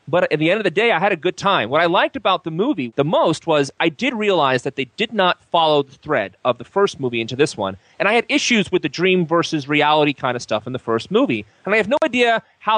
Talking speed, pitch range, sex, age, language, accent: 280 wpm, 140-215 Hz, male, 30-49, English, American